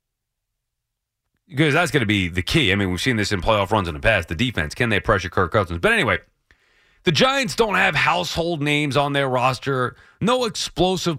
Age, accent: 30-49, American